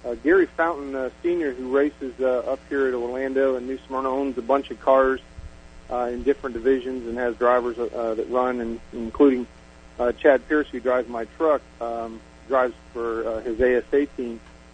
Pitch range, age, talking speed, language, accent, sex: 115-135 Hz, 40-59, 185 wpm, English, American, male